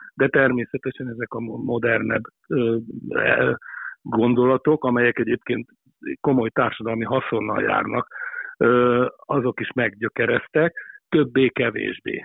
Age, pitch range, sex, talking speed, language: 60-79, 115-150 Hz, male, 80 wpm, Hungarian